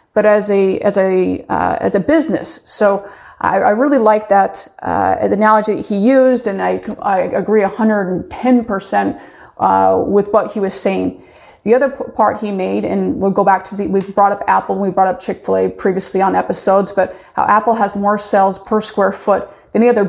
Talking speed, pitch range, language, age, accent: 205 wpm, 190-230 Hz, English, 30-49, American